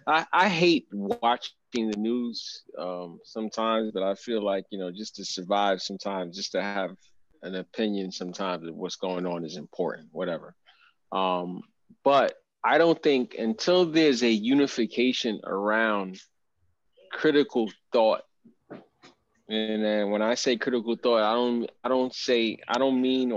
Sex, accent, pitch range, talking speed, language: male, American, 105-140 Hz, 150 wpm, English